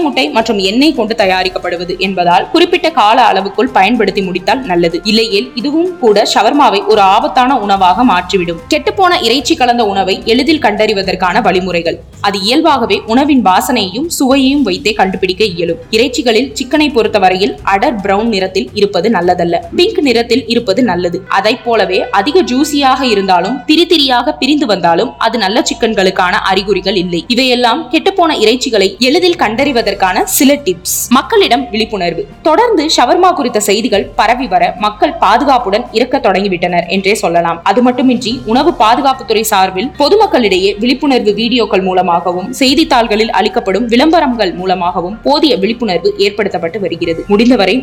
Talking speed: 125 wpm